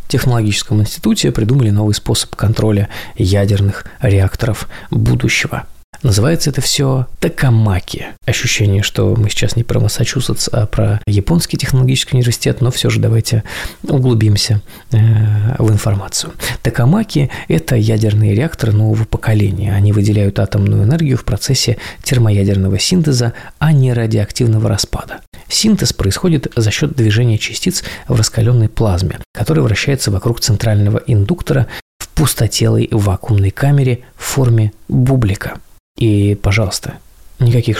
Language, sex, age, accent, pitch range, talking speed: Russian, male, 20-39, native, 105-130 Hz, 115 wpm